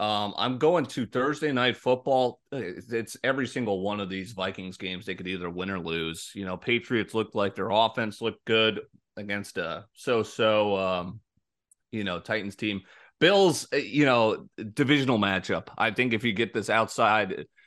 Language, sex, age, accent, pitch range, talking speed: English, male, 30-49, American, 95-125 Hz, 165 wpm